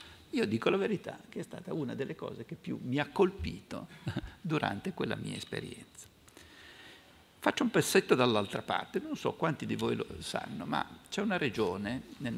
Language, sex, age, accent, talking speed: Italian, male, 50-69, native, 175 wpm